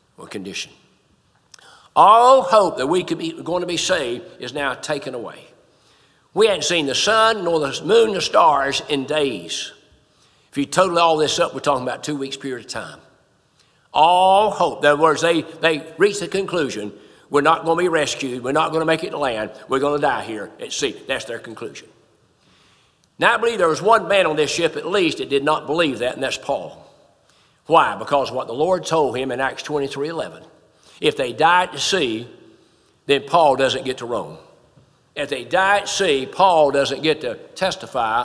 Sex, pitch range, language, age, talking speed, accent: male, 140-190 Hz, English, 60-79, 200 wpm, American